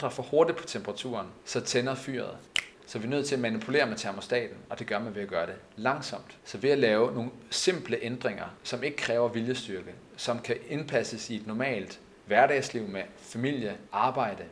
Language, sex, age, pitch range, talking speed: Danish, male, 30-49, 110-130 Hz, 190 wpm